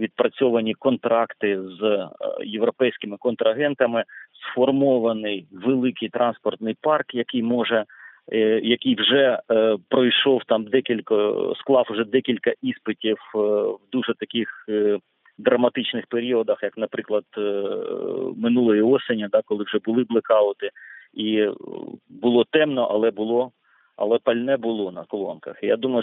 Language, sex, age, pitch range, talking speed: Ukrainian, male, 40-59, 105-130 Hz, 105 wpm